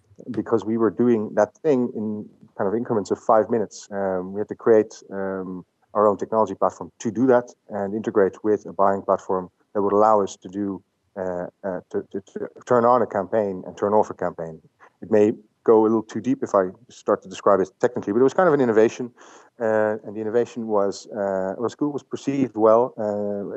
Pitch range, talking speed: 95-115 Hz, 210 wpm